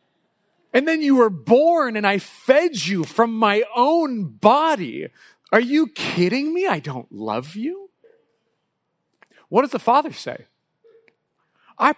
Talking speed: 135 wpm